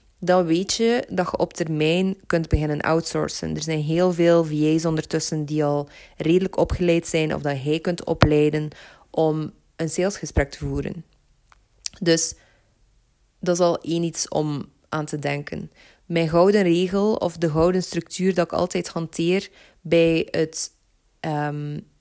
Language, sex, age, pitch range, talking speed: Dutch, female, 20-39, 150-175 Hz, 150 wpm